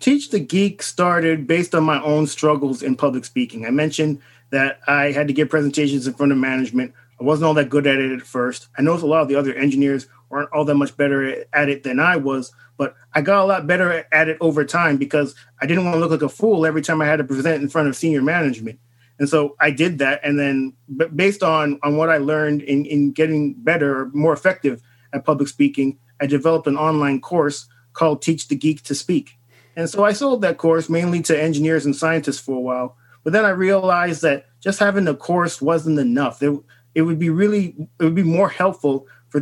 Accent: American